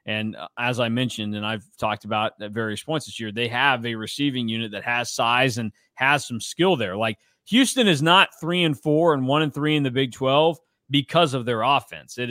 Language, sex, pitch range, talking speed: English, male, 115-150 Hz, 225 wpm